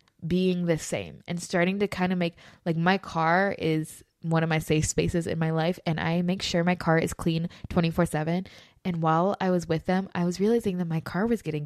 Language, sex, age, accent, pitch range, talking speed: English, female, 20-39, American, 165-195 Hz, 230 wpm